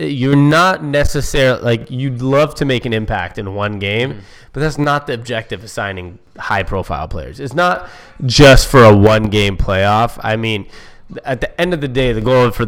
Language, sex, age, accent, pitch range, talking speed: English, male, 20-39, American, 105-130 Hz, 190 wpm